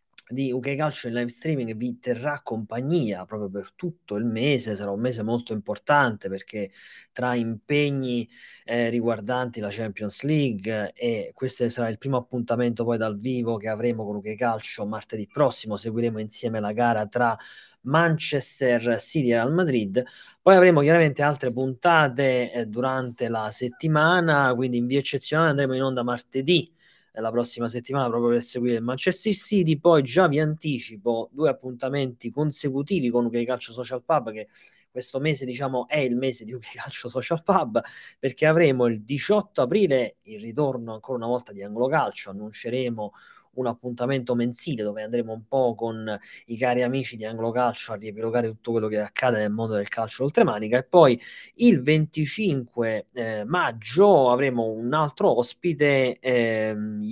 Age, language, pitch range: 30-49, Italian, 115-145 Hz